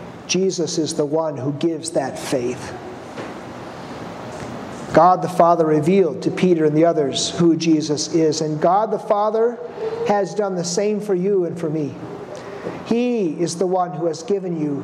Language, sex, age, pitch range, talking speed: English, male, 50-69, 160-200 Hz, 165 wpm